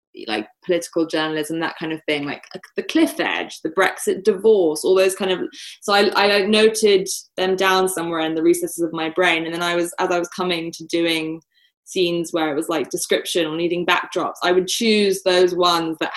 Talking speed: 210 wpm